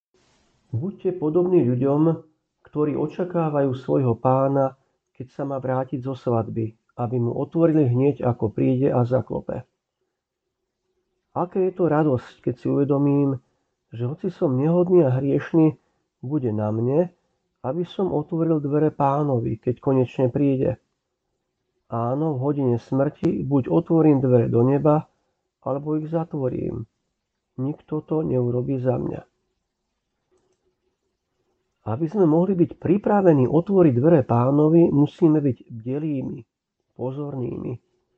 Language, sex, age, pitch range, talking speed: Slovak, male, 50-69, 125-165 Hz, 115 wpm